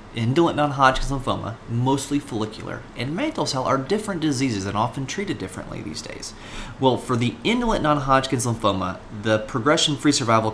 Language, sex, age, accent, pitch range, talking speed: English, male, 30-49, American, 100-130 Hz, 150 wpm